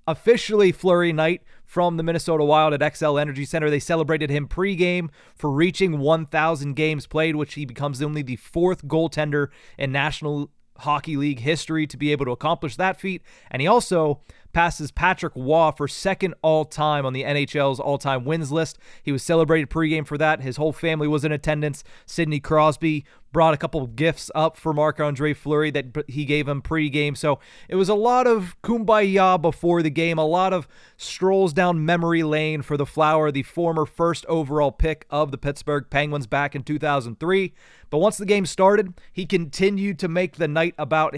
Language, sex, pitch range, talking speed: English, male, 150-175 Hz, 185 wpm